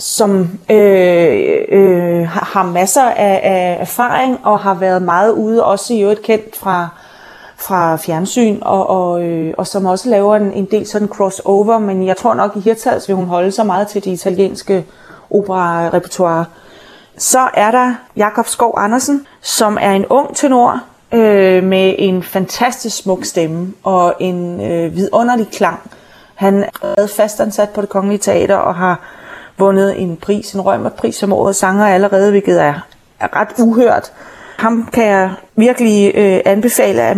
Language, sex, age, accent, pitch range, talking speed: Danish, female, 30-49, native, 185-225 Hz, 160 wpm